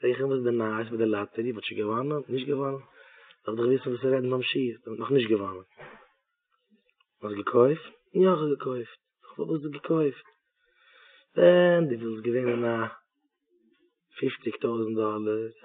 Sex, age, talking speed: male, 30-49, 60 wpm